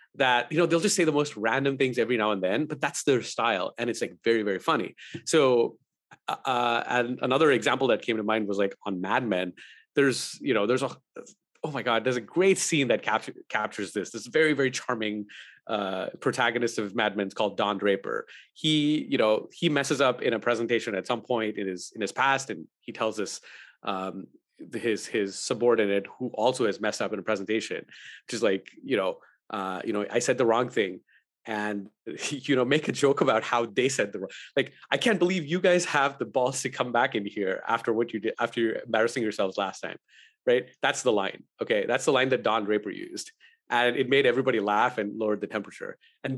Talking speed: 220 wpm